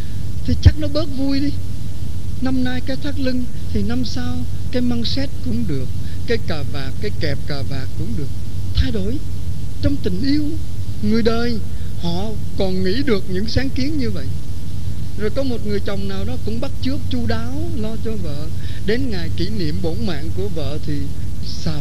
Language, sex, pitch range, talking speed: Vietnamese, male, 90-105 Hz, 190 wpm